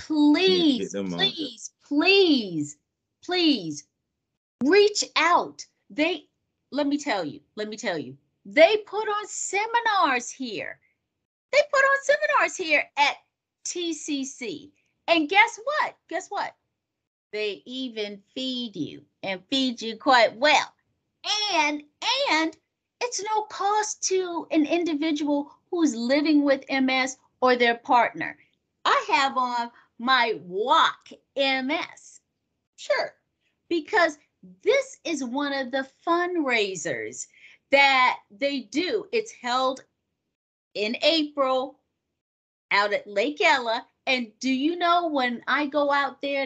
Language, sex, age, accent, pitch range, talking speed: English, female, 40-59, American, 260-350 Hz, 115 wpm